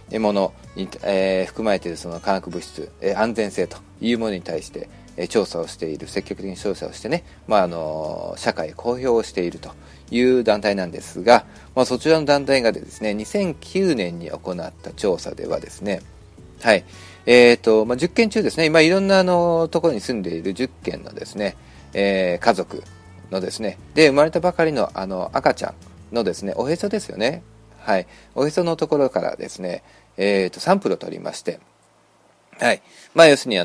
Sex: male